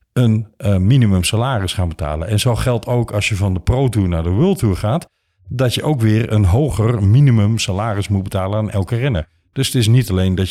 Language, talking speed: Dutch, 230 wpm